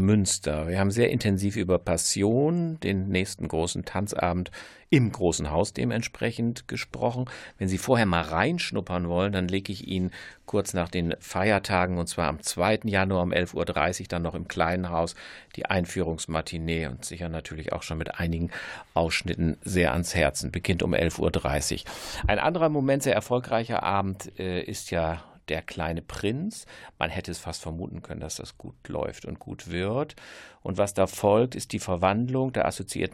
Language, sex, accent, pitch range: German, male, German, 85-105 Hz